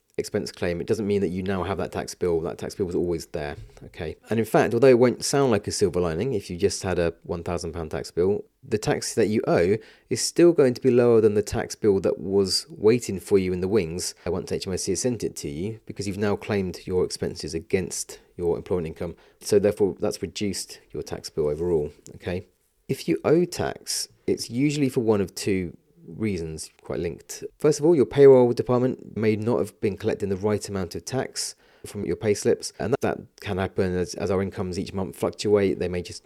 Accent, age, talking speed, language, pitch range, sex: British, 30-49, 220 wpm, English, 90-130 Hz, male